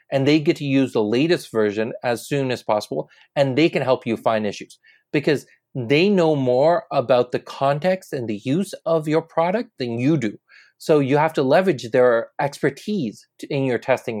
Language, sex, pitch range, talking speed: English, male, 125-160 Hz, 190 wpm